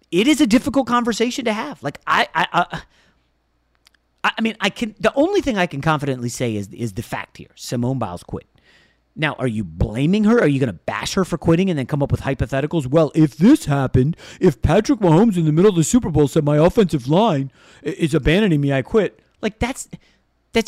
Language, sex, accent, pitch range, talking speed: English, male, American, 125-210 Hz, 220 wpm